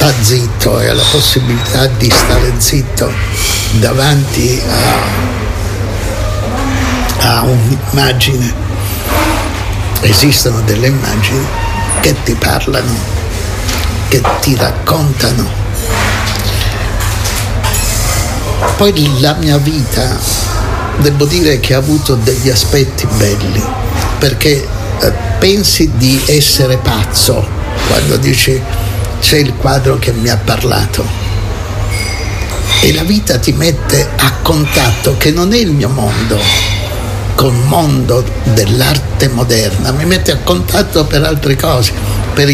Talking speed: 100 wpm